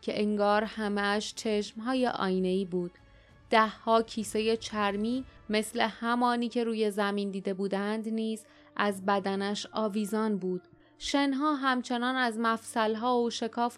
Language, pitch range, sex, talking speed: Persian, 200-240 Hz, female, 125 wpm